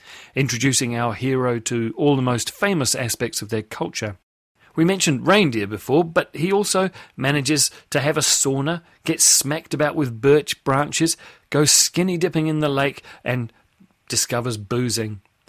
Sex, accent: male, British